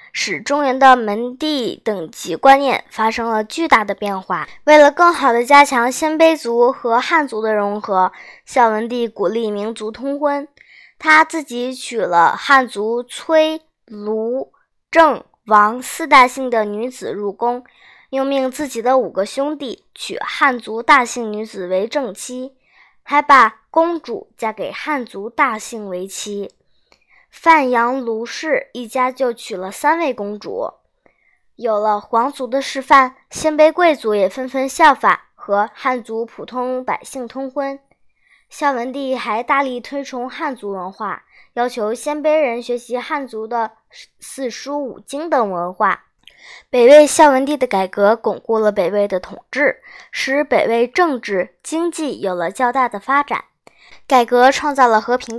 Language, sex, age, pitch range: Chinese, male, 10-29, 220-285 Hz